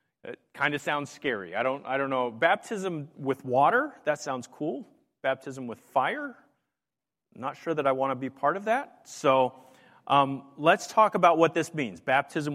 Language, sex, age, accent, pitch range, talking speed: English, male, 40-59, American, 125-175 Hz, 185 wpm